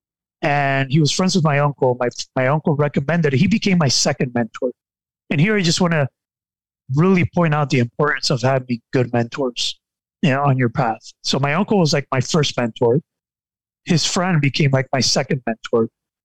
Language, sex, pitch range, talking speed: English, male, 125-160 Hz, 190 wpm